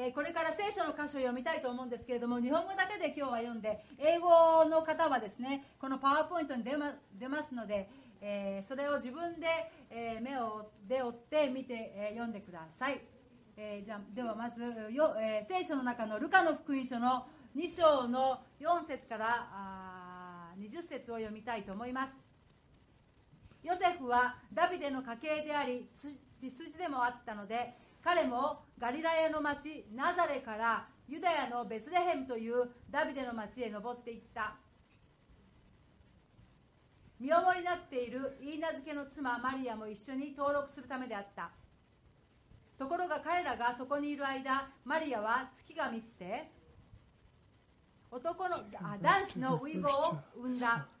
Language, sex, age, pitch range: English, female, 40-59, 235-305 Hz